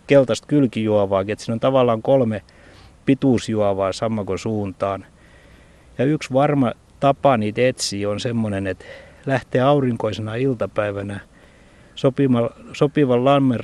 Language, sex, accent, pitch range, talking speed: Finnish, male, native, 100-125 Hz, 105 wpm